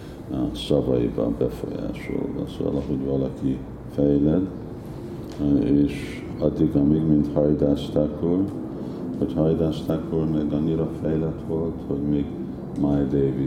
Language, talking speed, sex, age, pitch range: Hungarian, 95 wpm, male, 50-69, 65-80 Hz